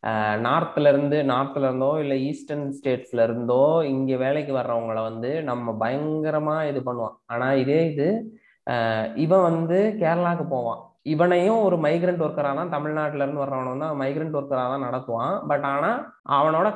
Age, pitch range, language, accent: 20-39, 120-150 Hz, Tamil, native